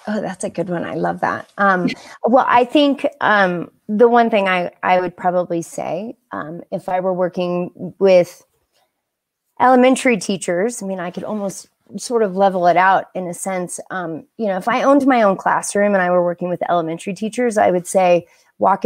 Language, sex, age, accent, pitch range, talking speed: English, female, 30-49, American, 185-245 Hz, 195 wpm